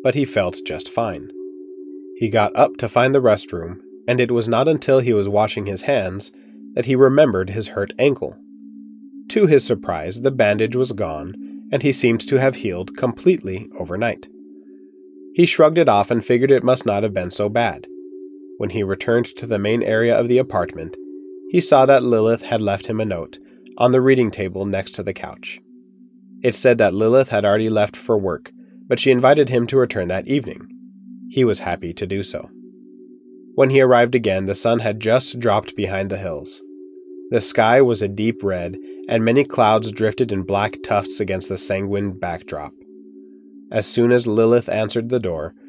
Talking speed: 185 wpm